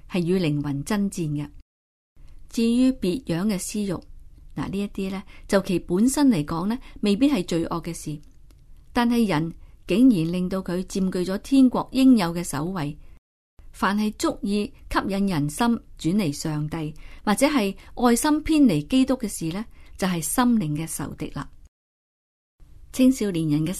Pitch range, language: 145-205 Hz, Chinese